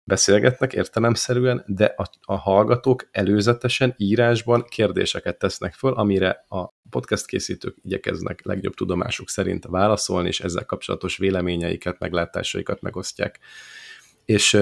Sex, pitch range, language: male, 90-110 Hz, Hungarian